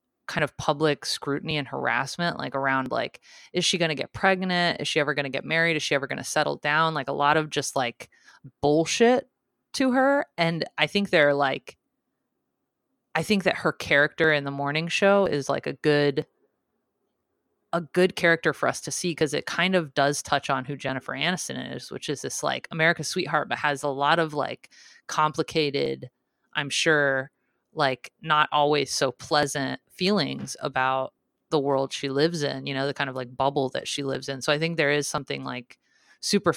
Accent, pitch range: American, 135-160 Hz